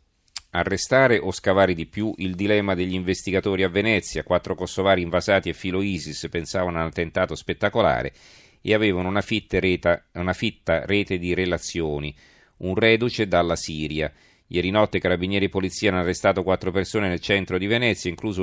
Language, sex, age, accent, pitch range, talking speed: Italian, male, 40-59, native, 80-100 Hz, 165 wpm